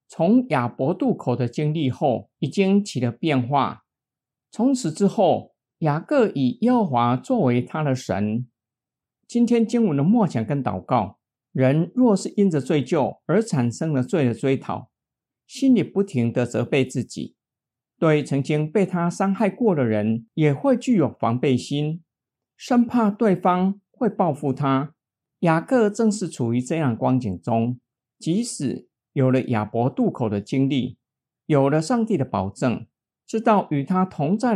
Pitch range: 125-205 Hz